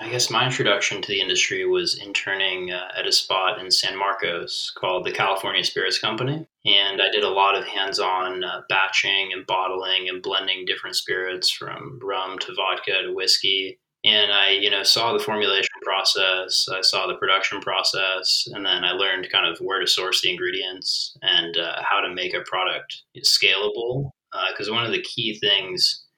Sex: male